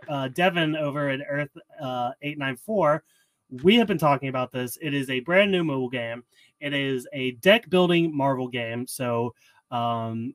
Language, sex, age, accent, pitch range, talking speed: English, male, 30-49, American, 130-165 Hz, 170 wpm